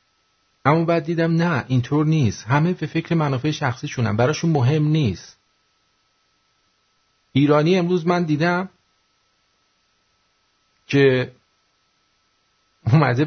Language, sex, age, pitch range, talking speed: English, male, 50-69, 110-150 Hz, 95 wpm